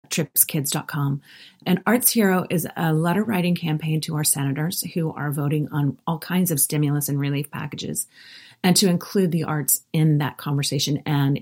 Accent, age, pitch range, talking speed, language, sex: American, 30-49, 145-170 Hz, 170 wpm, English, female